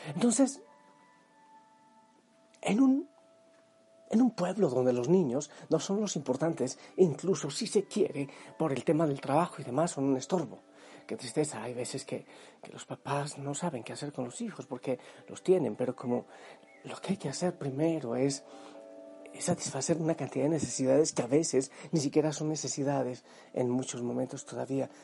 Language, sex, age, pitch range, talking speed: Spanish, male, 40-59, 130-185 Hz, 170 wpm